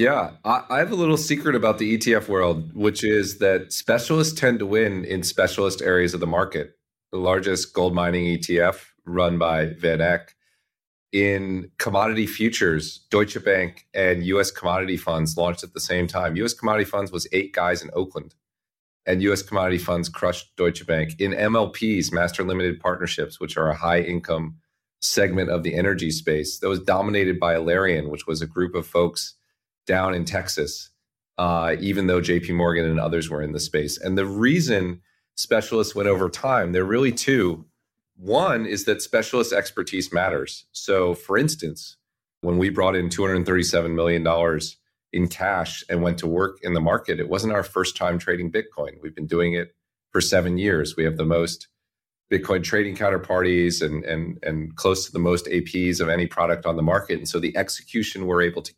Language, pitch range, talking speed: English, 85-100 Hz, 180 wpm